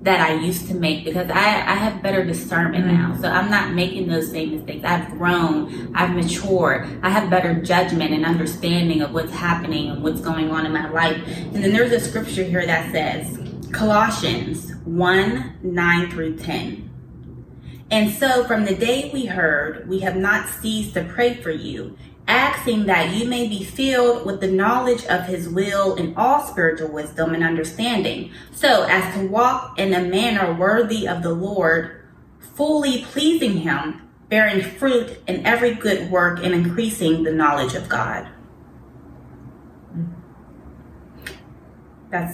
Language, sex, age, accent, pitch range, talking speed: English, female, 20-39, American, 165-210 Hz, 160 wpm